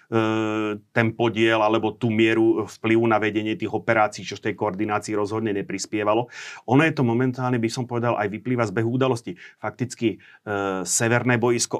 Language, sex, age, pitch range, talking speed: Slovak, male, 30-49, 105-120 Hz, 160 wpm